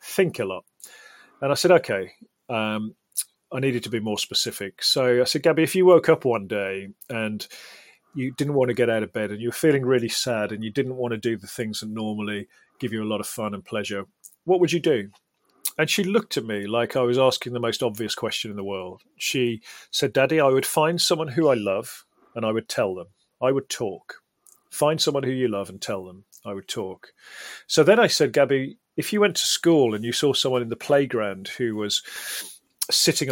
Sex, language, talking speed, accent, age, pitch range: male, English, 225 wpm, British, 40-59, 105-140 Hz